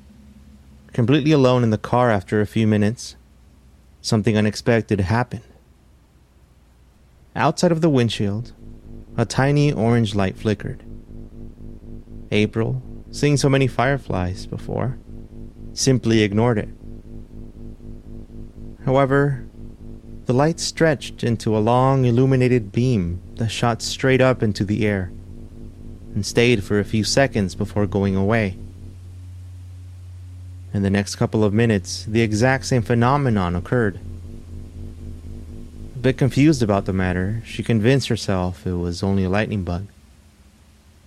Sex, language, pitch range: male, English, 85-120 Hz